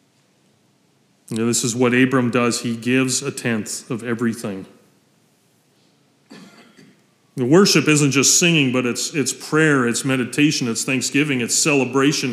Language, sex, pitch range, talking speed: English, male, 125-145 Hz, 135 wpm